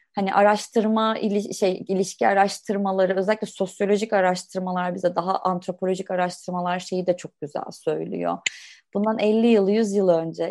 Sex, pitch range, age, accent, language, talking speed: female, 180-220 Hz, 30-49, native, Turkish, 135 wpm